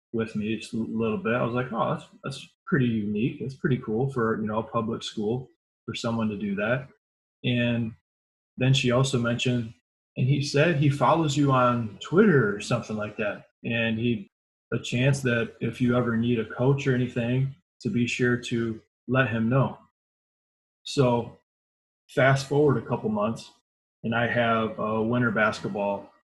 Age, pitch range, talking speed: 20-39, 110-135 Hz, 175 wpm